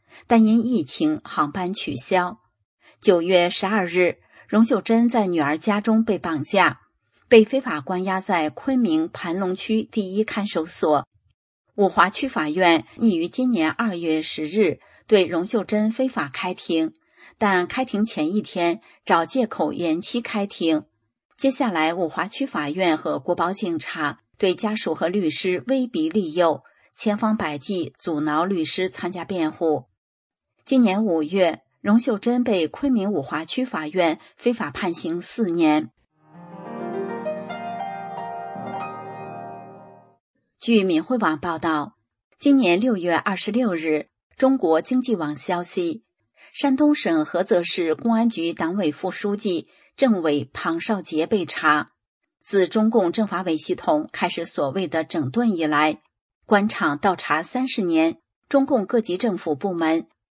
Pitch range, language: 160-225 Hz, English